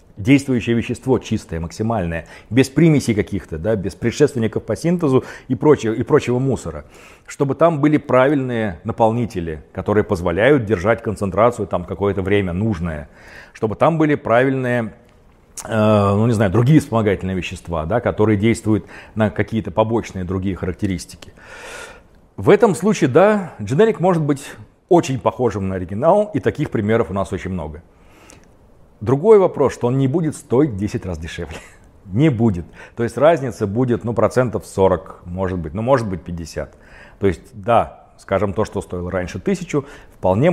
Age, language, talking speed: 40-59, Russian, 145 wpm